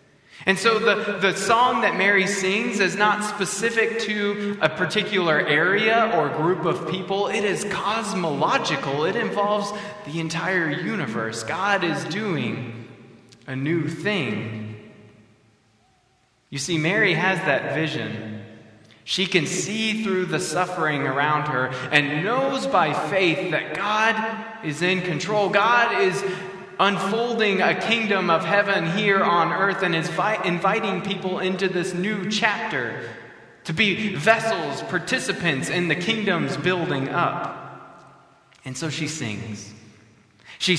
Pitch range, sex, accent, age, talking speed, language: 150-200 Hz, male, American, 20-39, 130 wpm, English